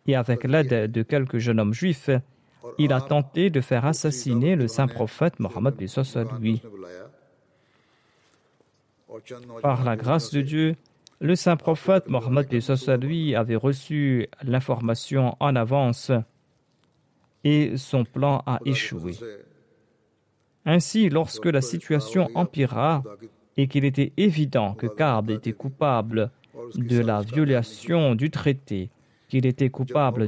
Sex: male